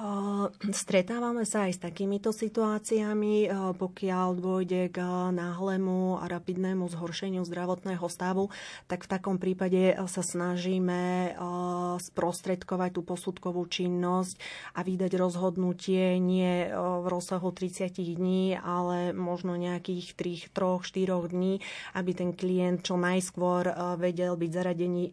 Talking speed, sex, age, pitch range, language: 110 wpm, female, 30-49, 175-185 Hz, Slovak